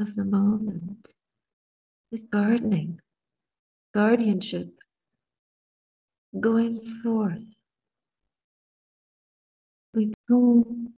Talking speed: 55 wpm